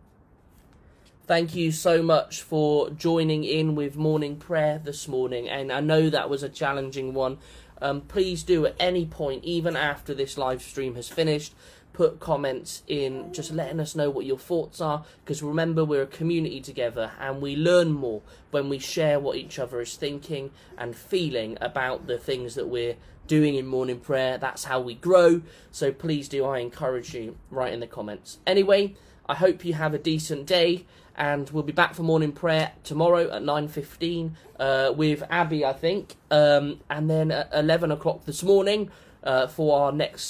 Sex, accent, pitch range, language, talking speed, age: male, British, 135-165 Hz, English, 180 wpm, 20-39